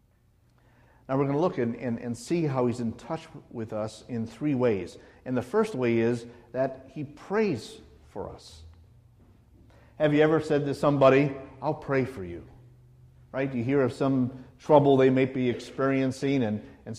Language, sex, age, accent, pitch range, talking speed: English, male, 50-69, American, 115-145 Hz, 175 wpm